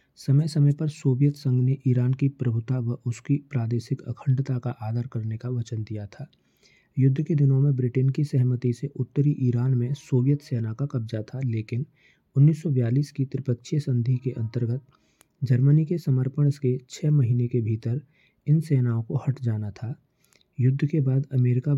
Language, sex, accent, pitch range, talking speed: Hindi, male, native, 125-140 Hz, 170 wpm